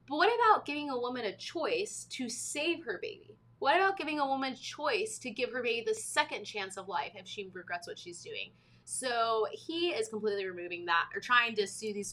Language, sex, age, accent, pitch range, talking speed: English, female, 20-39, American, 205-305 Hz, 225 wpm